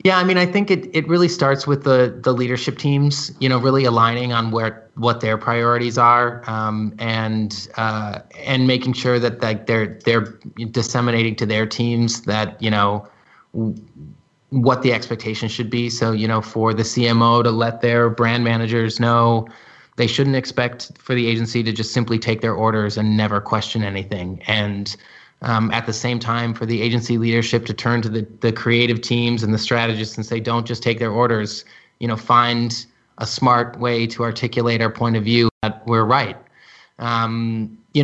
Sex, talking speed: male, 190 wpm